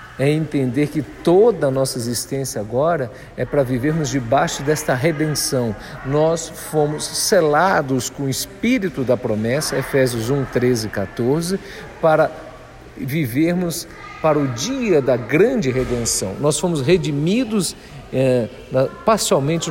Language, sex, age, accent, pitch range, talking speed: Portuguese, male, 50-69, Brazilian, 130-170 Hz, 120 wpm